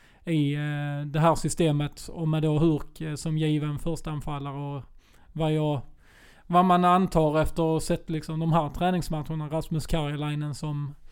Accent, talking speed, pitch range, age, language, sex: native, 155 wpm, 145-165 Hz, 20-39, Swedish, male